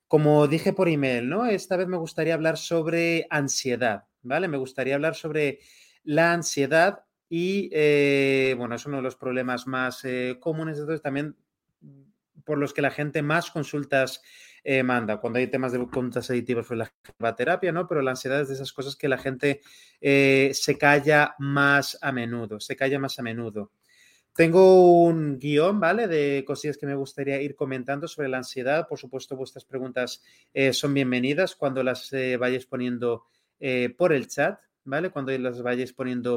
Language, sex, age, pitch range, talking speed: Spanish, male, 30-49, 130-165 Hz, 175 wpm